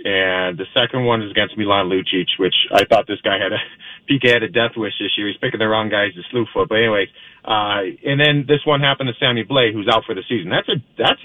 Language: English